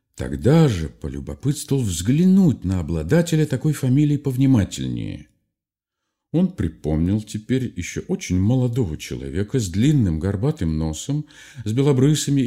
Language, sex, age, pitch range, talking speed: Russian, male, 50-69, 95-145 Hz, 105 wpm